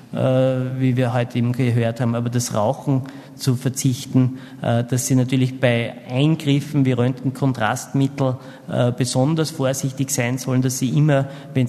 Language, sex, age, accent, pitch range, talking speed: German, male, 50-69, Austrian, 125-140 Hz, 135 wpm